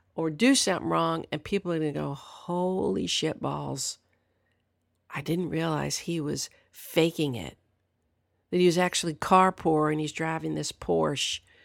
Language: English